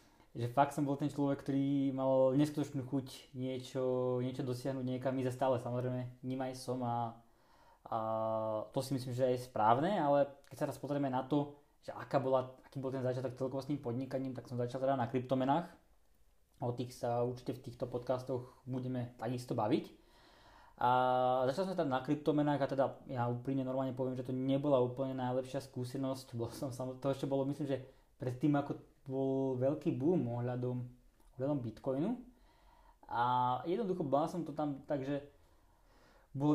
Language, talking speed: Slovak, 170 wpm